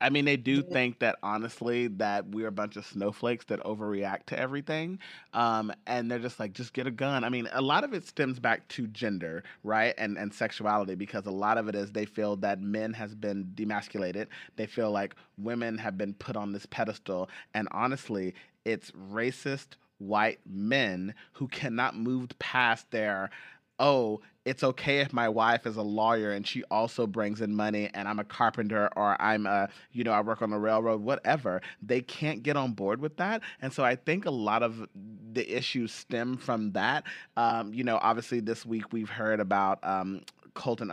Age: 30-49